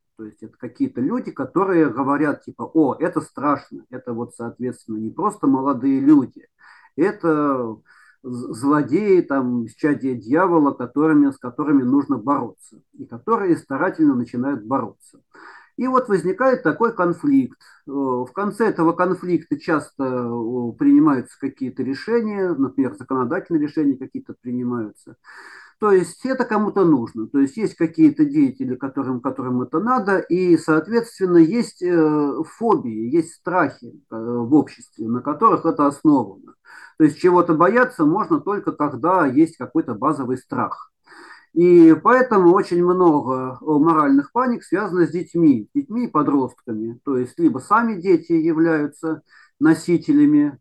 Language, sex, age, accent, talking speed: Russian, male, 40-59, native, 125 wpm